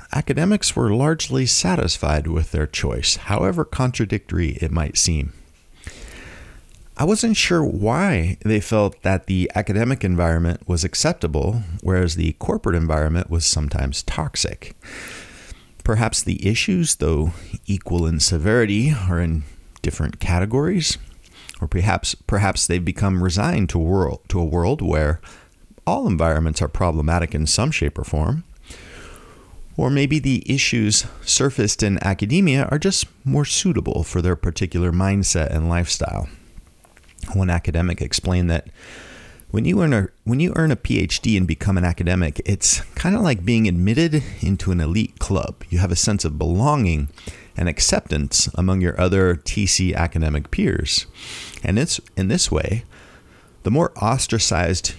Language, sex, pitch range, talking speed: English, male, 85-110 Hz, 140 wpm